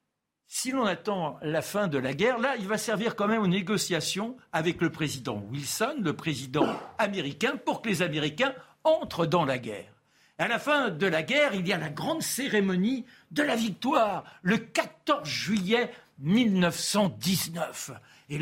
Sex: male